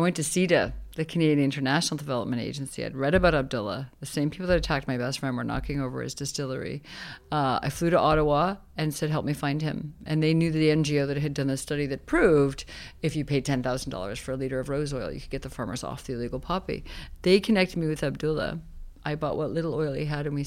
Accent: American